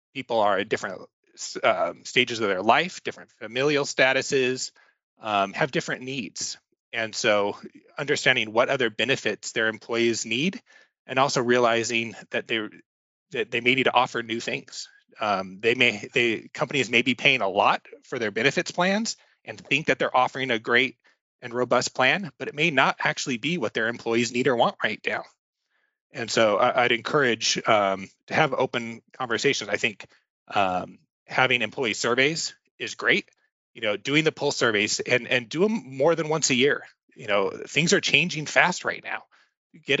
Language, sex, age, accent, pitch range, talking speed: English, male, 30-49, American, 120-150 Hz, 175 wpm